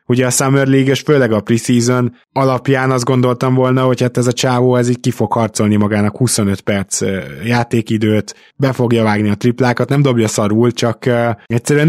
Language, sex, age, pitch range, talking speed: Hungarian, male, 20-39, 105-125 Hz, 180 wpm